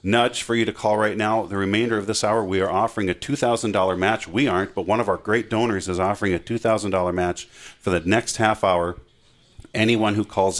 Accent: American